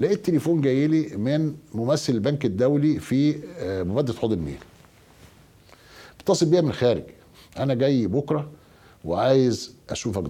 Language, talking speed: Arabic, 120 wpm